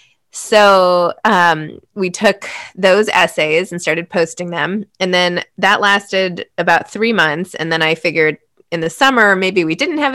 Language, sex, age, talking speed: English, female, 20-39, 165 wpm